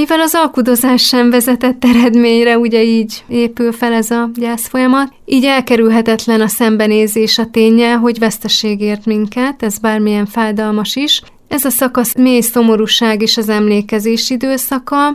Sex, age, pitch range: female, 30-49, 210-245 Hz